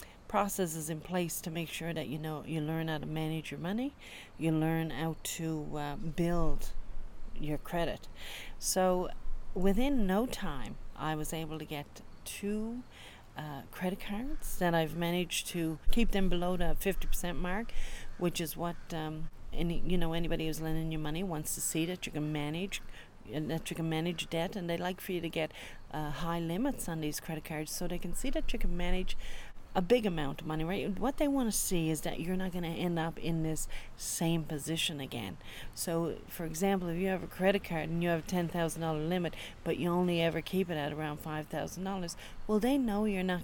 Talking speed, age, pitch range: 205 wpm, 40-59, 155-185 Hz